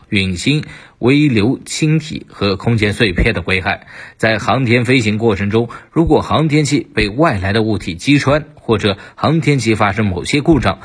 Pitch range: 100-135 Hz